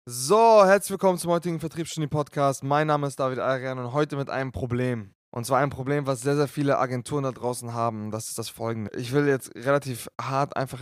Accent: German